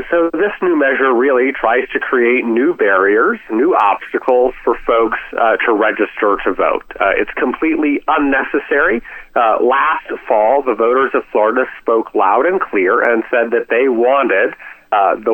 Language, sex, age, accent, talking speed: English, male, 40-59, American, 160 wpm